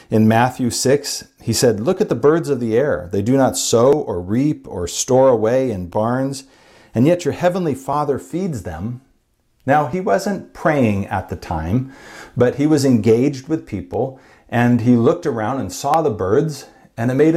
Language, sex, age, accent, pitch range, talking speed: English, male, 50-69, American, 110-140 Hz, 185 wpm